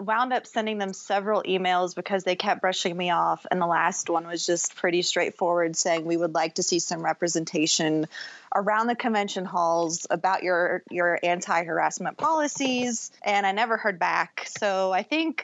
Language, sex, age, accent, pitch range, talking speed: English, female, 30-49, American, 180-225 Hz, 175 wpm